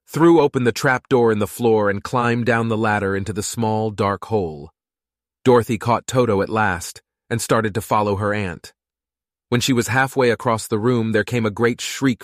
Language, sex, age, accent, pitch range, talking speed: Italian, male, 30-49, American, 95-120 Hz, 200 wpm